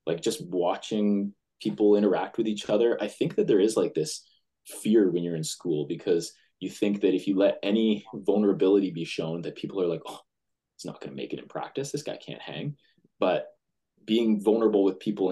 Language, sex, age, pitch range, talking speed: English, male, 20-39, 85-110 Hz, 210 wpm